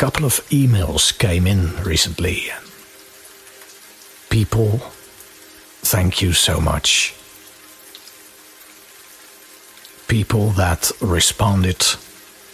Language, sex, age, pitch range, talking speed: English, male, 60-79, 95-105 Hz, 65 wpm